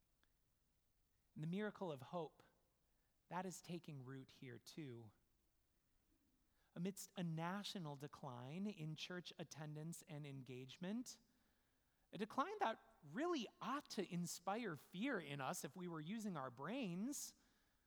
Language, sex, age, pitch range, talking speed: English, male, 30-49, 135-195 Hz, 120 wpm